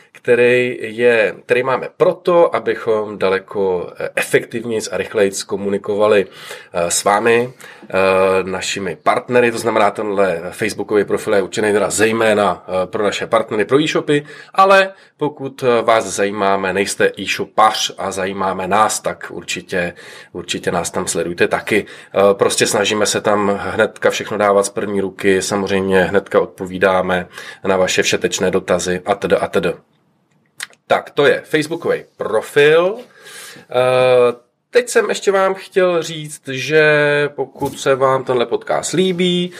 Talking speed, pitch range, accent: 125 wpm, 100-160 Hz, native